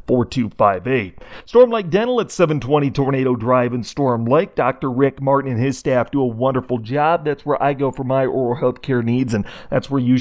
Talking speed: 205 wpm